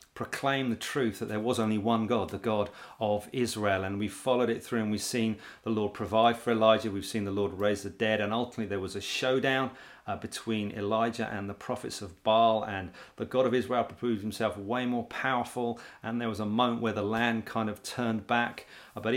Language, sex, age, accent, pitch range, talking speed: English, male, 40-59, British, 105-125 Hz, 220 wpm